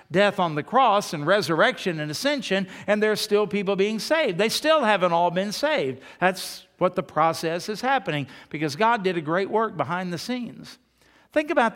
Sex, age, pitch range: male, 60-79, 165-220 Hz